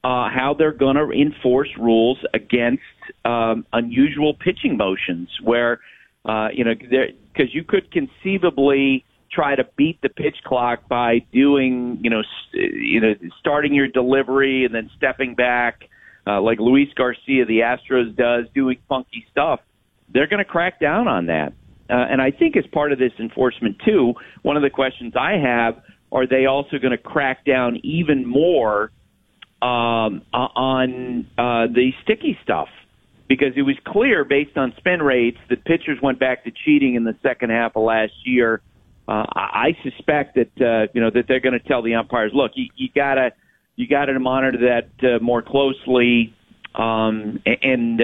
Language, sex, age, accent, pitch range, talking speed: English, male, 50-69, American, 115-140 Hz, 170 wpm